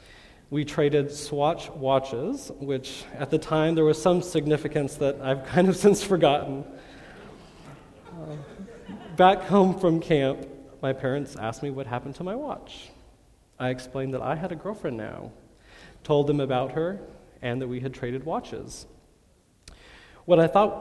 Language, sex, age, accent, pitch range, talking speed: English, male, 30-49, American, 125-160 Hz, 155 wpm